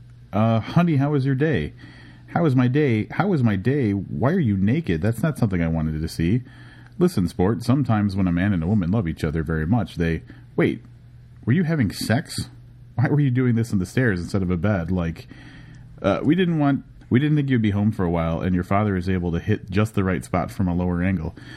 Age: 30-49